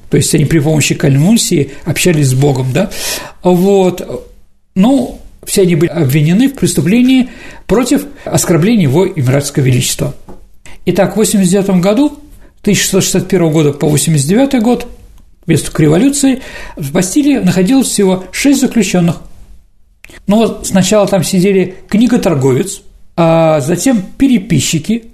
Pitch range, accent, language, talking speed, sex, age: 160-220 Hz, native, Russian, 115 wpm, male, 50-69